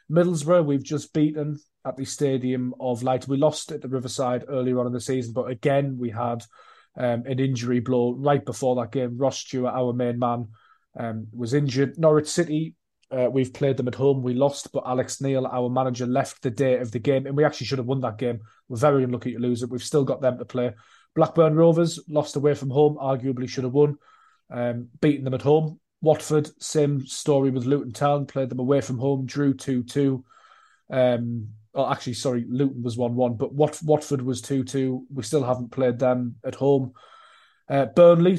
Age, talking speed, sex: 20-39, 200 wpm, male